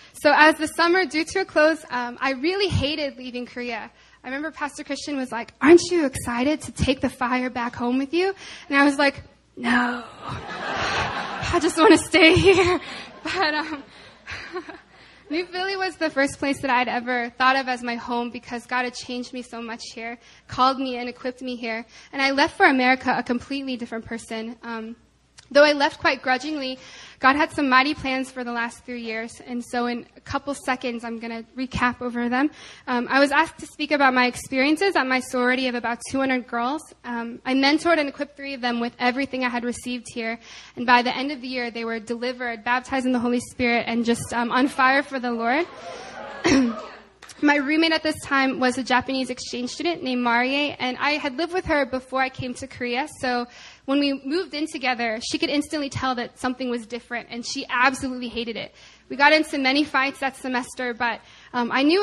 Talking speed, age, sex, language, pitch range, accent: 210 wpm, 10-29, female, English, 245-295 Hz, American